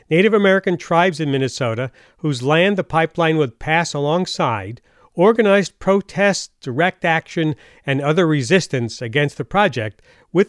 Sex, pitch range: male, 145-195 Hz